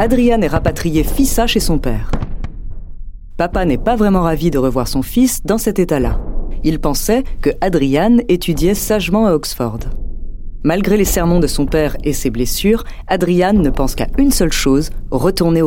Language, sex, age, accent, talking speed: French, female, 30-49, French, 170 wpm